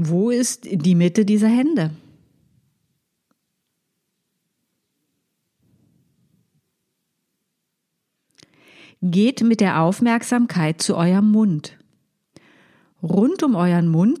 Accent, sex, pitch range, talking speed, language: German, female, 165-225 Hz, 70 wpm, German